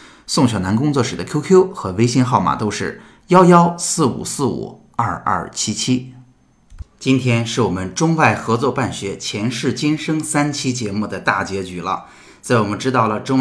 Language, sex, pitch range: Chinese, male, 105-130 Hz